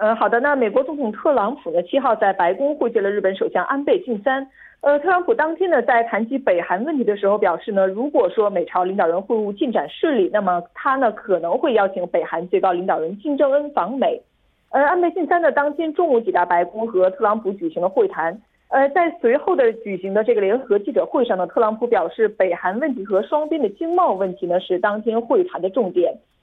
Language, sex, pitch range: Korean, female, 195-315 Hz